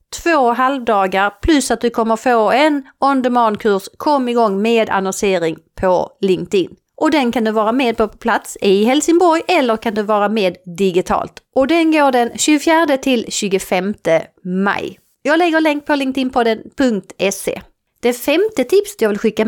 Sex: female